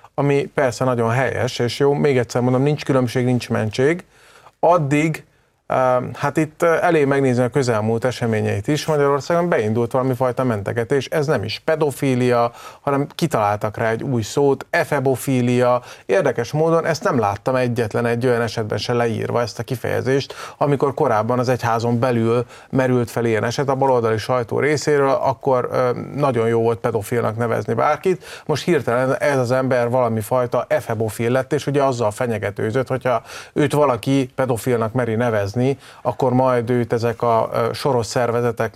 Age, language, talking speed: 30-49, Hungarian, 150 wpm